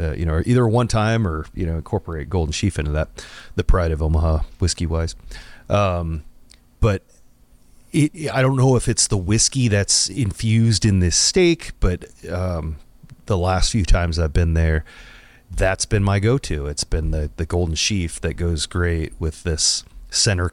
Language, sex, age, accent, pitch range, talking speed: English, male, 30-49, American, 80-100 Hz, 175 wpm